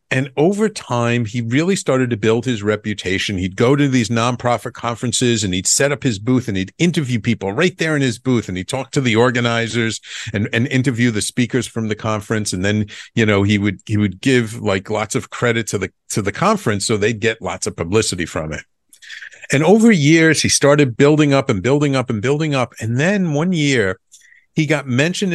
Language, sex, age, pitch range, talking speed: English, male, 50-69, 115-160 Hz, 215 wpm